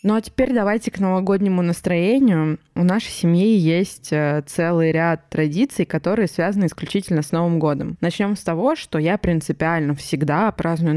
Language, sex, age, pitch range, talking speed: Russian, female, 20-39, 165-210 Hz, 155 wpm